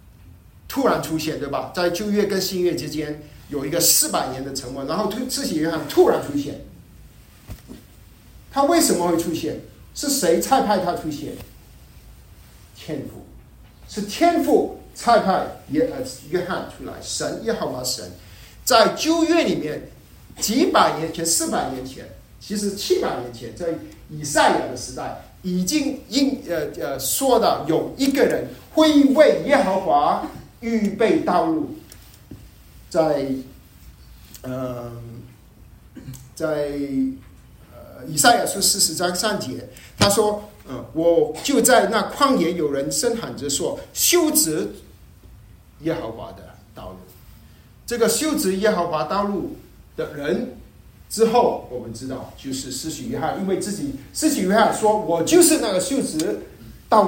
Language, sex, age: Chinese, male, 50-69